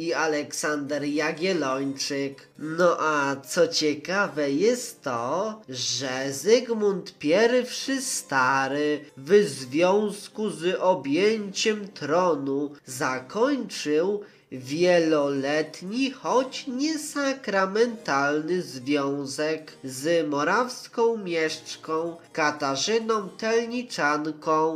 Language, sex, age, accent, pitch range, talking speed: Polish, male, 20-39, native, 150-215 Hz, 70 wpm